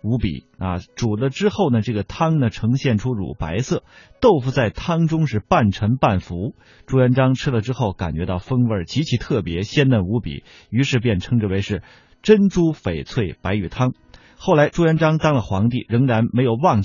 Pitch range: 105-145 Hz